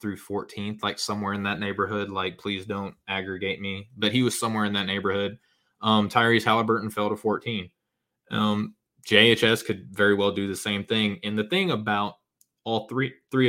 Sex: male